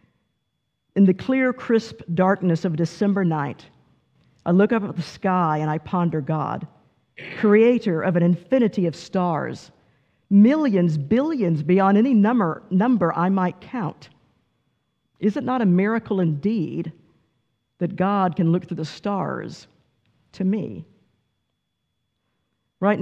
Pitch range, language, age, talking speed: 165-210 Hz, English, 50-69, 130 wpm